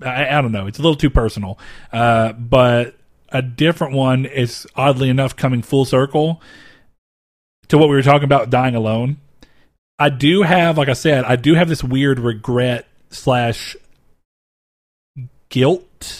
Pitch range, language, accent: 120-140 Hz, English, American